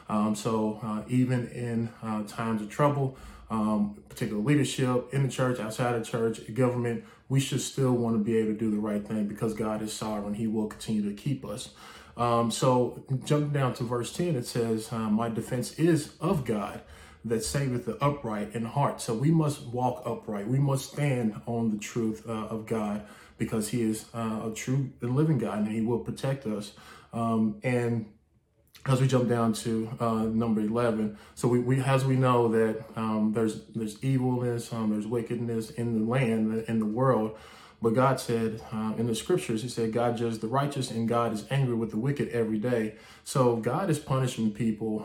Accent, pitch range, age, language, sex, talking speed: American, 110-125 Hz, 20-39, English, male, 195 wpm